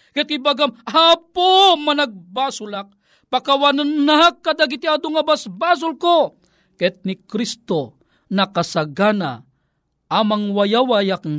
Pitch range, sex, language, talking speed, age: 215-295 Hz, male, Filipino, 70 wpm, 40-59